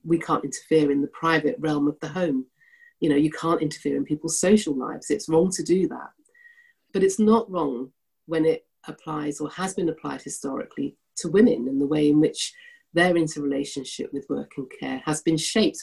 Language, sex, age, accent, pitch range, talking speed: English, female, 40-59, British, 150-195 Hz, 195 wpm